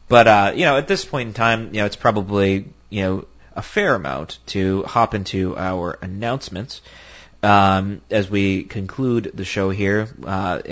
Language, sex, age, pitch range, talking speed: English, male, 30-49, 95-155 Hz, 175 wpm